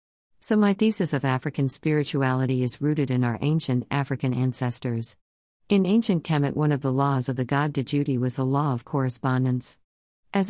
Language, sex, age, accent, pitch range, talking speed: English, female, 50-69, American, 130-160 Hz, 175 wpm